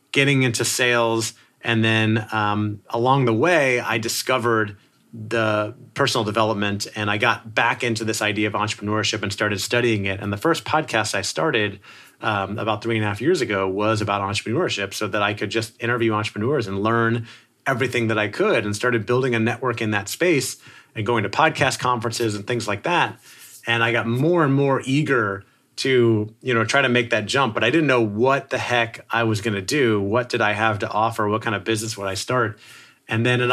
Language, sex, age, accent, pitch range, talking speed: English, male, 30-49, American, 105-125 Hz, 210 wpm